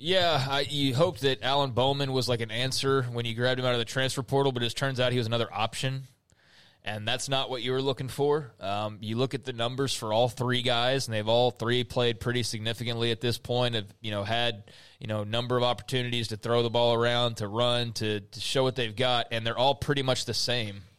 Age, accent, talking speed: 20-39, American, 245 wpm